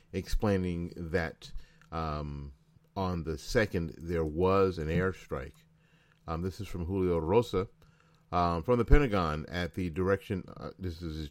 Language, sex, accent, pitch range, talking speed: English, male, American, 80-110 Hz, 145 wpm